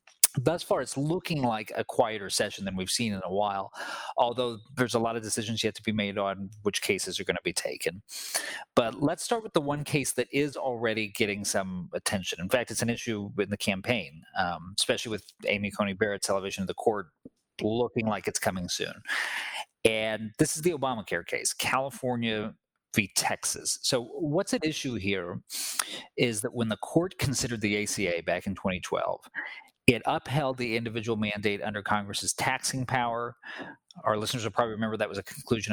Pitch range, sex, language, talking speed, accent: 105-130 Hz, male, English, 185 wpm, American